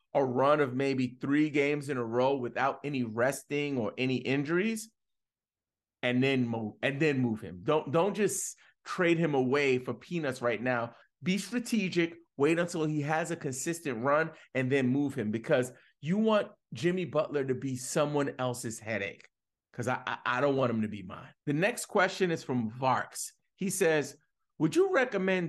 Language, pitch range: English, 125-170 Hz